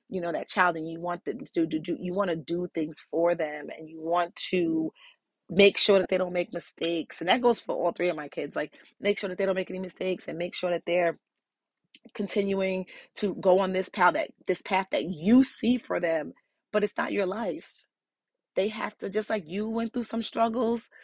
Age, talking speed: 30-49, 235 wpm